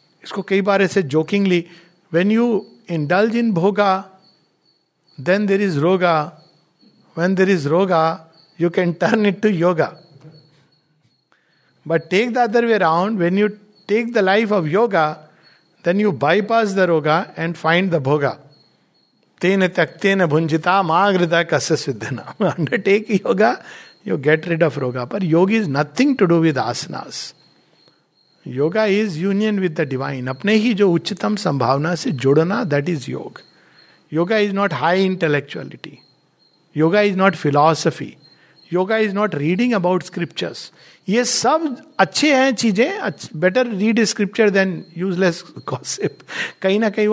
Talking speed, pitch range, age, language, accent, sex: 125 wpm, 160-205 Hz, 60-79, Hindi, native, male